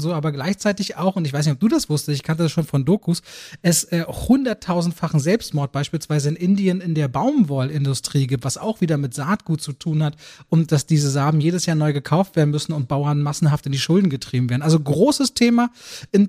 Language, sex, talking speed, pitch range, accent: German, male, 220 wpm, 160-200 Hz, German